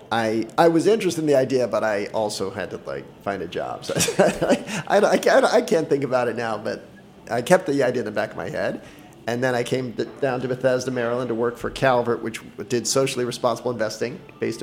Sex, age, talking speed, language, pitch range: male, 40-59, 235 wpm, English, 115-145 Hz